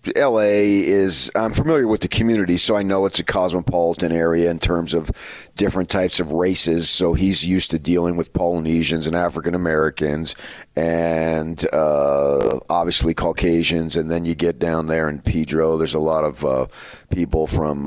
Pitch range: 80-100 Hz